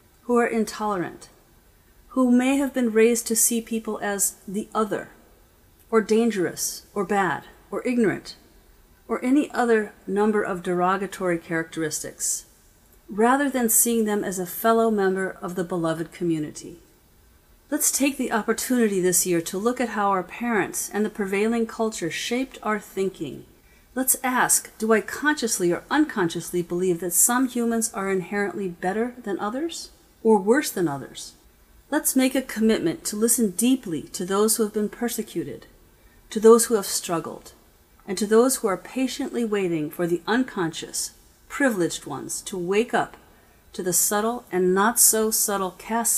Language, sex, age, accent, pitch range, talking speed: English, female, 40-59, American, 175-230 Hz, 155 wpm